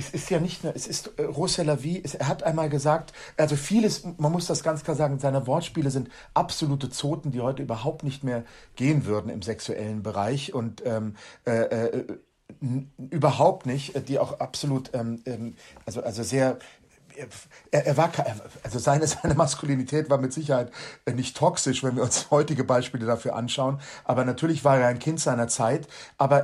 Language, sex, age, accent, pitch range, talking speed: German, male, 50-69, German, 135-160 Hz, 180 wpm